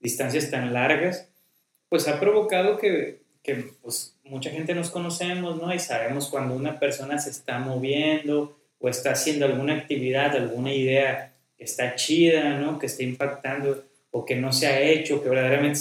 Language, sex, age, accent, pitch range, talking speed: Spanish, male, 30-49, Mexican, 135-170 Hz, 165 wpm